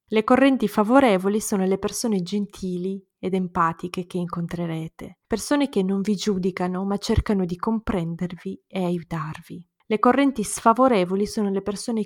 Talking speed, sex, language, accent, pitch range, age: 140 wpm, female, Italian, native, 180-220 Hz, 20-39